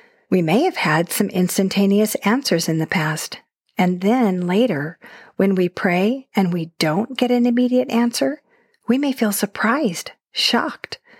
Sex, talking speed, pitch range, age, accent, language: female, 150 wpm, 175-230 Hz, 50-69, American, English